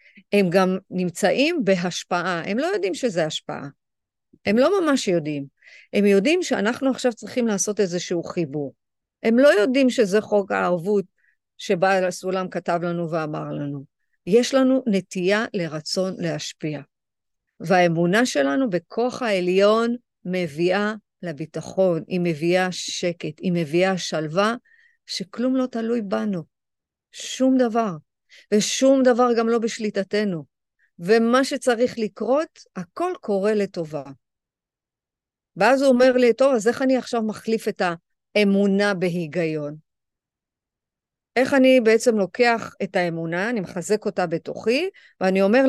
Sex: female